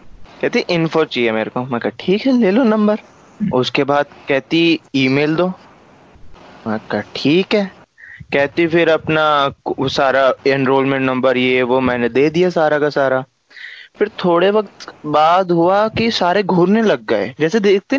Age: 20-39